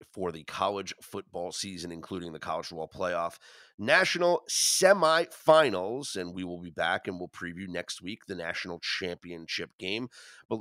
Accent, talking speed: American, 155 wpm